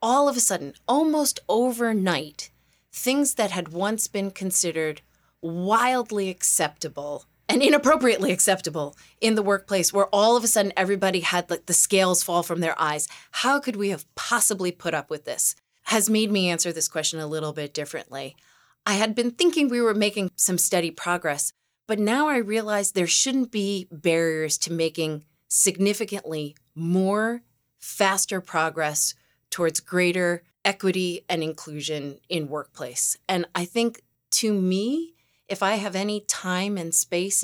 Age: 30-49